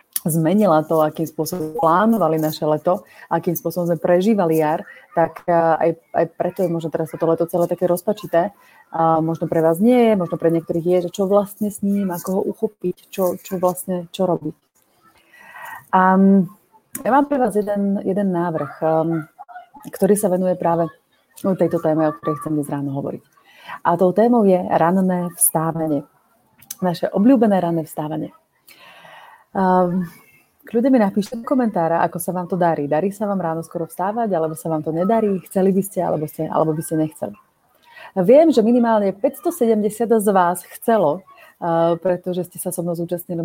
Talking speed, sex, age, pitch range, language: 165 wpm, female, 30-49, 165-200 Hz, Slovak